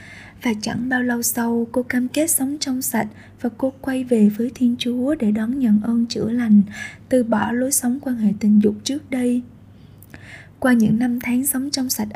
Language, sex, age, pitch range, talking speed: Vietnamese, female, 20-39, 210-255 Hz, 200 wpm